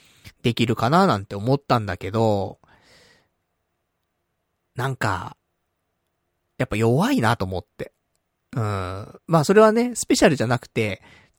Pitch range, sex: 95-135 Hz, male